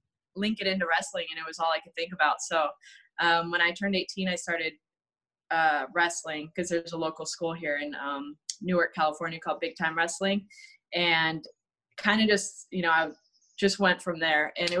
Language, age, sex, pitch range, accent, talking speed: English, 20-39, female, 160-190 Hz, American, 200 wpm